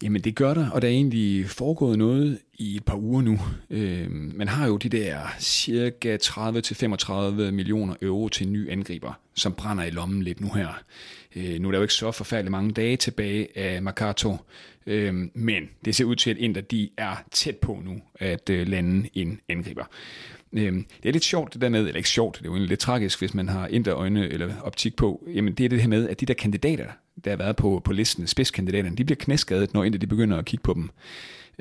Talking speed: 210 wpm